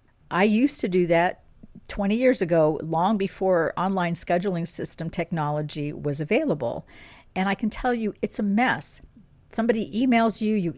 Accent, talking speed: American, 155 wpm